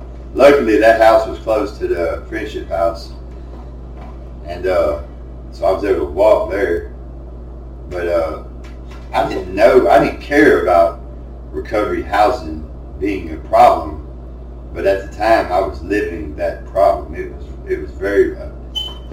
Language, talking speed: English, 145 wpm